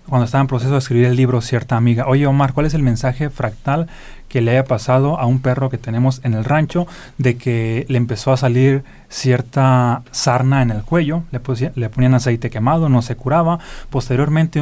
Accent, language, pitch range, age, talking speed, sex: Mexican, Spanish, 120-140 Hz, 30-49, 205 wpm, male